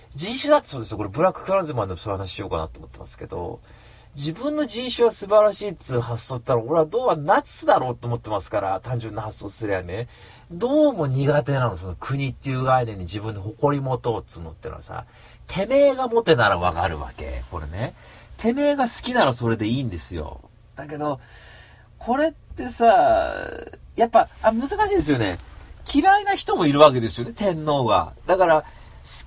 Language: Japanese